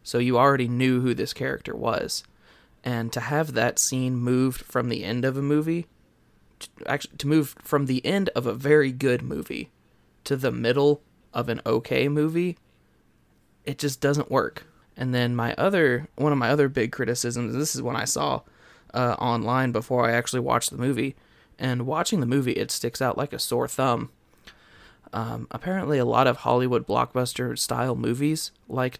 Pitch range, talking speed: 120-140 Hz, 180 wpm